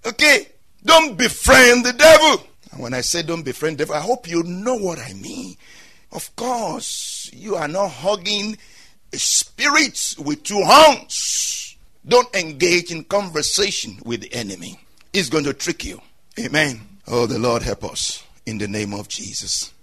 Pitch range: 150-240 Hz